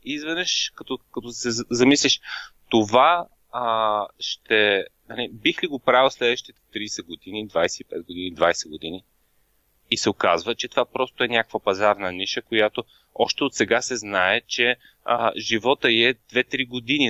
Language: Bulgarian